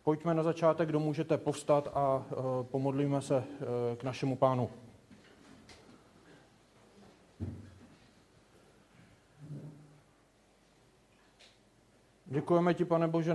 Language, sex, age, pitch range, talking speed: Czech, male, 40-59, 135-155 Hz, 80 wpm